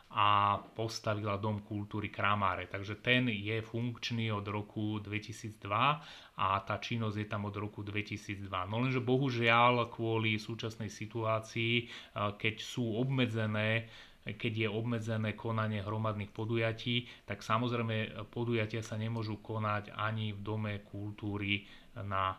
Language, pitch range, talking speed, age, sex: Slovak, 105-120 Hz, 125 wpm, 30-49, male